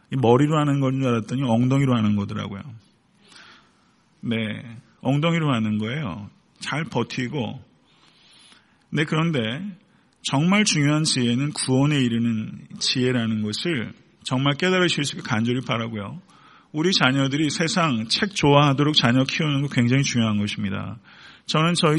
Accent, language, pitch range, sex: native, Korean, 120-160 Hz, male